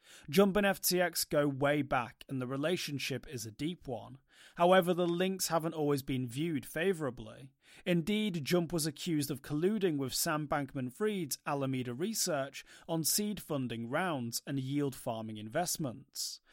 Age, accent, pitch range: 30-49, British, 135-175 Hz